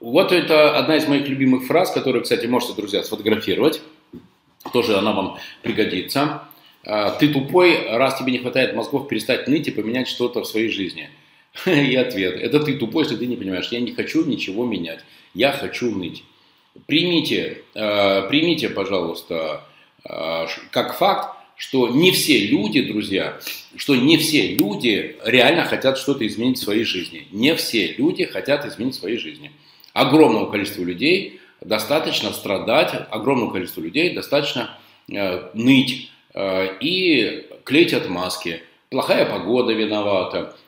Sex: male